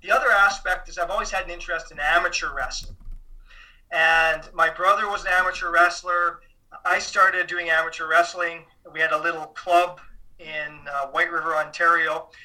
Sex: male